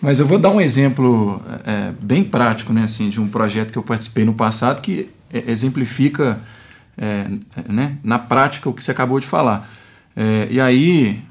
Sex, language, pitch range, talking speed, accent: male, Portuguese, 115-150 Hz, 160 wpm, Brazilian